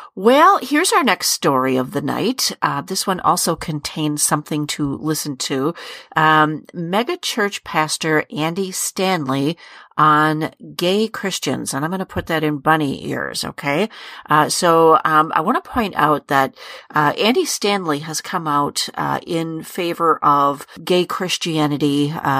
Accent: American